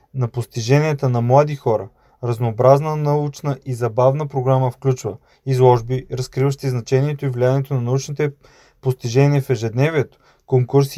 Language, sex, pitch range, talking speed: Bulgarian, male, 125-145 Hz, 120 wpm